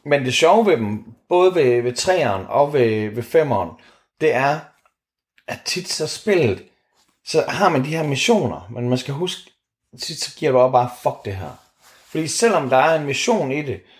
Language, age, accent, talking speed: Danish, 30-49, native, 195 wpm